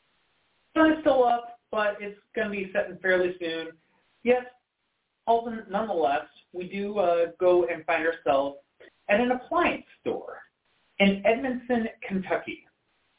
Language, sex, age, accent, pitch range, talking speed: English, male, 40-59, American, 175-270 Hz, 125 wpm